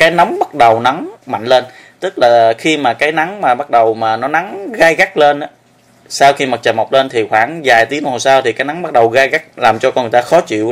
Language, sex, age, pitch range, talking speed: Vietnamese, male, 20-39, 120-145 Hz, 275 wpm